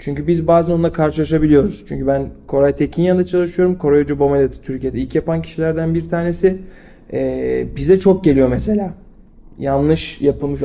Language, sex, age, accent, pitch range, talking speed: Turkish, male, 40-59, native, 145-175 Hz, 145 wpm